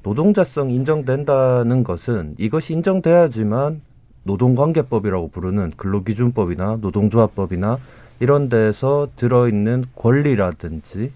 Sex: male